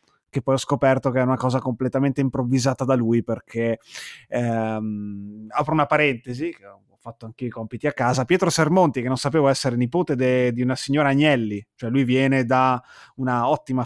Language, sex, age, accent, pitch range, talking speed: Italian, male, 20-39, native, 120-145 Hz, 180 wpm